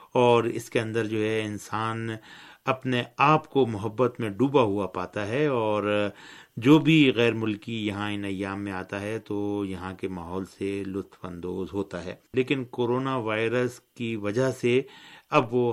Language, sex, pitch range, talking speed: Urdu, male, 100-120 Hz, 170 wpm